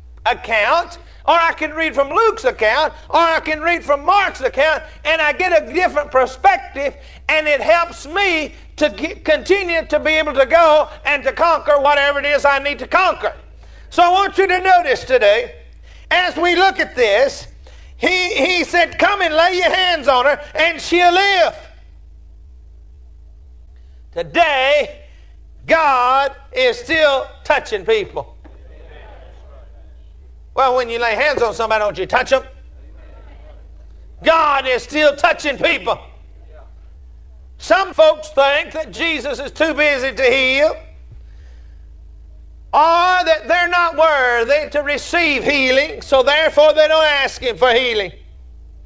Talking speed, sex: 140 wpm, male